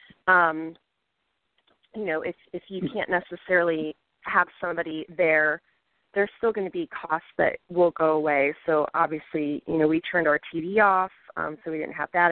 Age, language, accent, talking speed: 30-49, English, American, 175 wpm